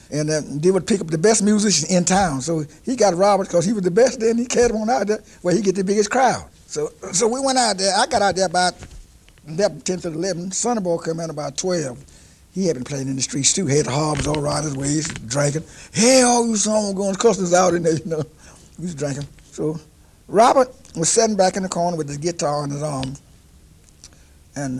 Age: 60-79